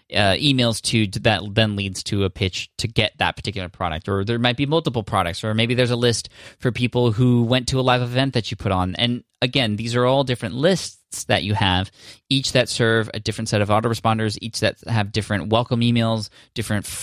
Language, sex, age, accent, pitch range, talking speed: English, male, 20-39, American, 95-120 Hz, 220 wpm